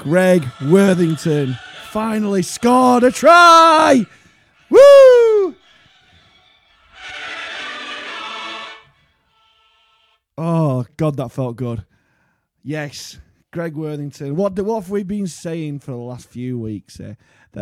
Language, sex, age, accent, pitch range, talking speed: English, male, 30-49, British, 115-155 Hz, 95 wpm